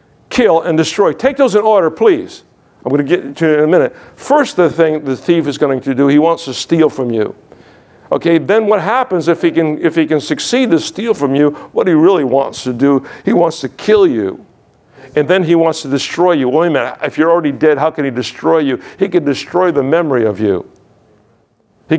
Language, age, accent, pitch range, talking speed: English, 50-69, American, 145-215 Hz, 225 wpm